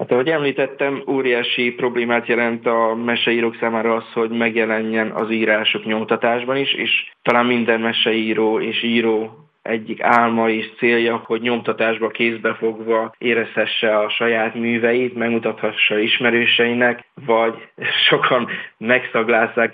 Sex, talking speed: male, 115 wpm